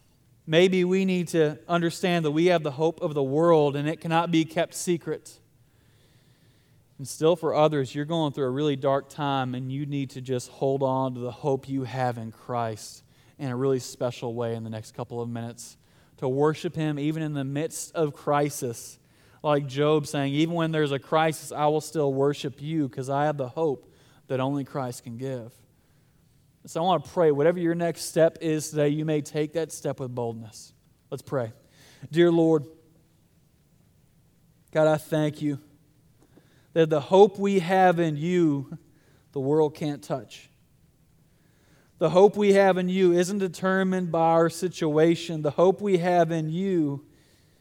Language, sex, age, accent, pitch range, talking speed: English, male, 20-39, American, 135-160 Hz, 180 wpm